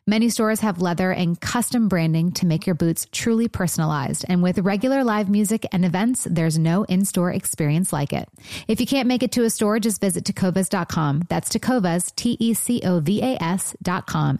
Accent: American